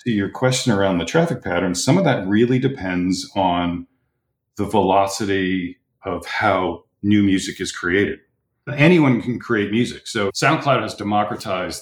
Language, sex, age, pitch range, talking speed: English, male, 40-59, 90-120 Hz, 145 wpm